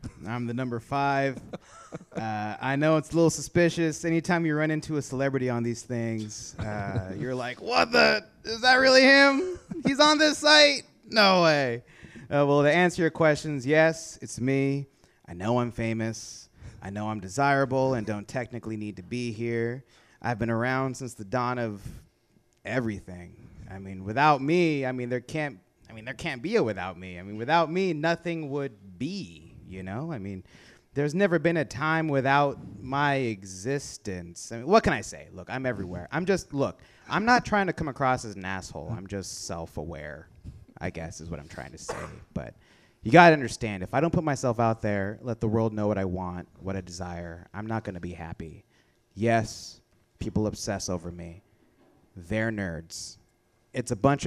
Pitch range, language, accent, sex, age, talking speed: 100-145 Hz, English, American, male, 30-49, 185 wpm